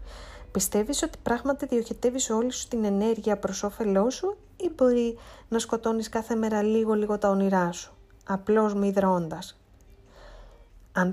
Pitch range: 190-240 Hz